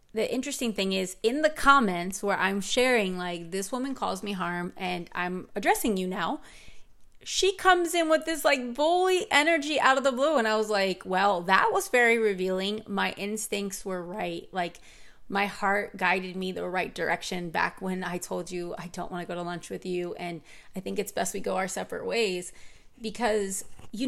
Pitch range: 185-230 Hz